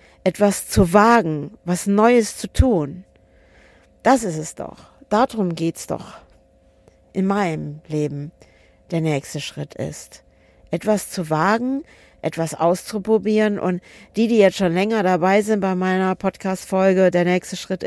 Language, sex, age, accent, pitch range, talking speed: German, female, 50-69, German, 160-200 Hz, 135 wpm